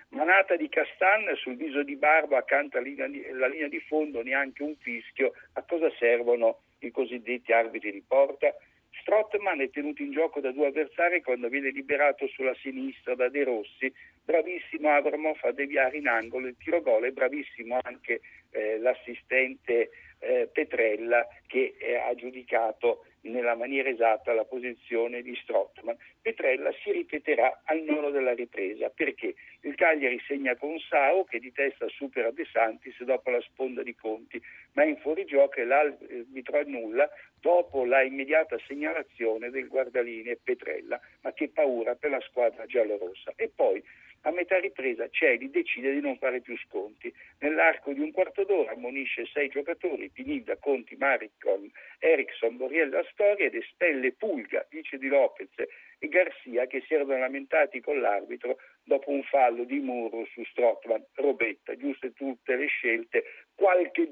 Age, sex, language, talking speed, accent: 60-79, male, Italian, 150 wpm, native